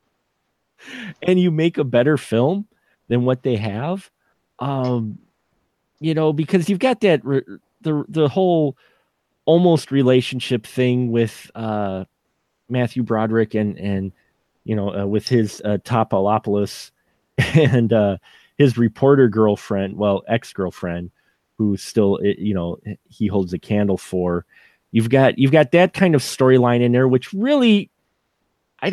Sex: male